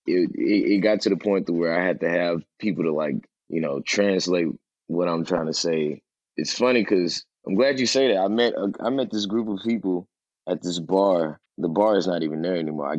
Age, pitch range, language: 20-39, 85-105 Hz, English